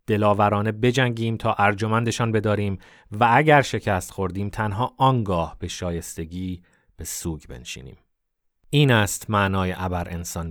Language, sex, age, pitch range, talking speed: Persian, male, 30-49, 95-120 Hz, 120 wpm